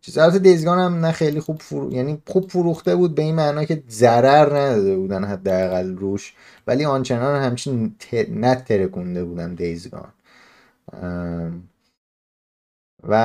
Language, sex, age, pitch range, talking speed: Persian, male, 30-49, 100-135 Hz, 120 wpm